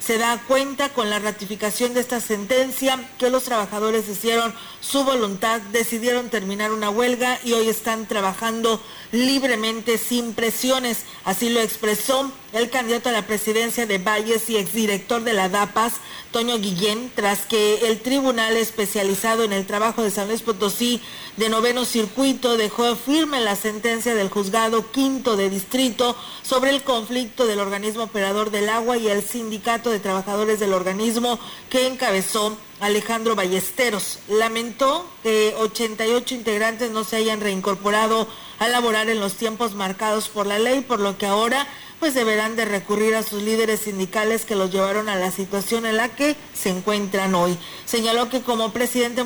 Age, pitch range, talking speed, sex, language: 40-59, 210-240 Hz, 160 wpm, female, Spanish